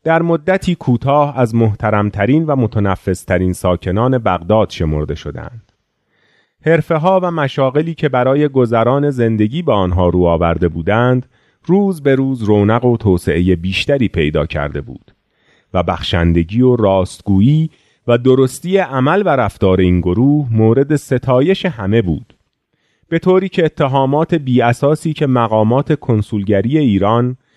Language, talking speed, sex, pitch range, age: Persian, 125 wpm, male, 95-145 Hz, 30-49